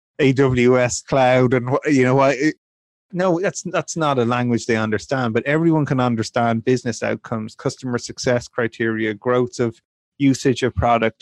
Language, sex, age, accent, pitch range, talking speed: English, male, 30-49, Irish, 120-150 Hz, 150 wpm